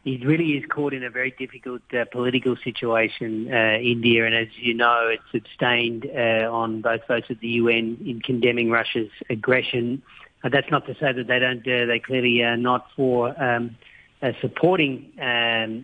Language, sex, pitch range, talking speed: English, male, 115-130 Hz, 180 wpm